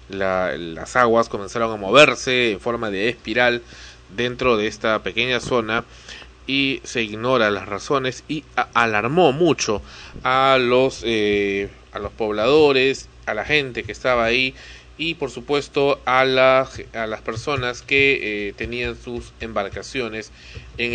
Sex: male